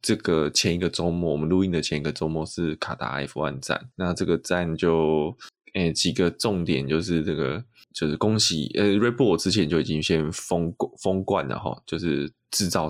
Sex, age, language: male, 20-39, Chinese